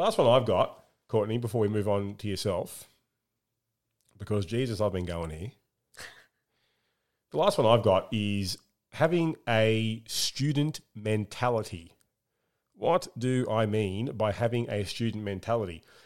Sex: male